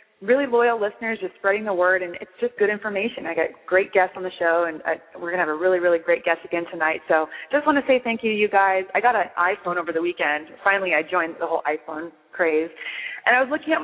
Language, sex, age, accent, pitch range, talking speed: English, female, 30-49, American, 165-210 Hz, 265 wpm